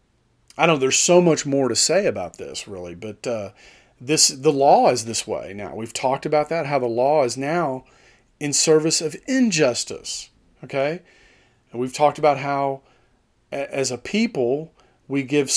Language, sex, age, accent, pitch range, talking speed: English, male, 40-59, American, 125-165 Hz, 170 wpm